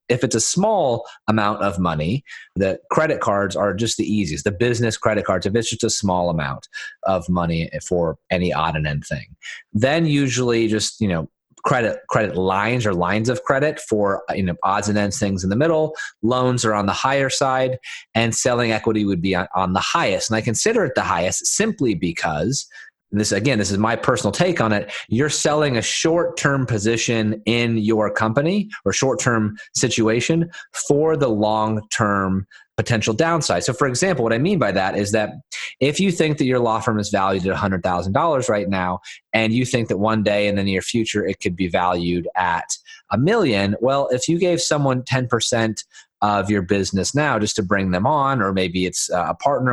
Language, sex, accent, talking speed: English, male, American, 195 wpm